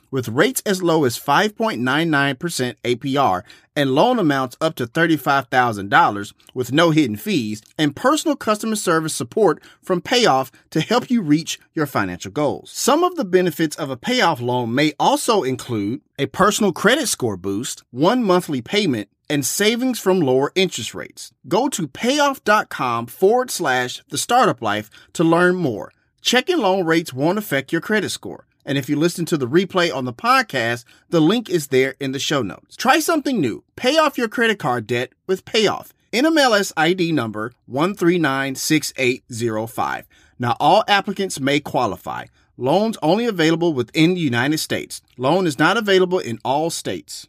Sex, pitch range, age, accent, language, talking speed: male, 130-195 Hz, 30-49, American, English, 160 wpm